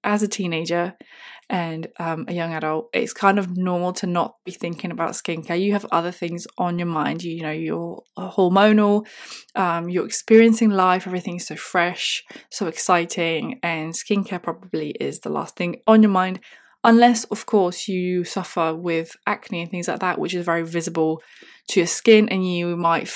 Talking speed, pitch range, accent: 180 wpm, 170-205 Hz, British